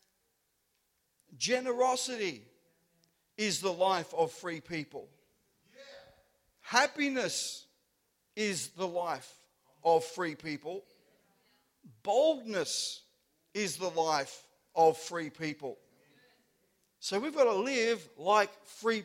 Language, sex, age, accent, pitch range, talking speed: English, male, 50-69, Australian, 175-230 Hz, 90 wpm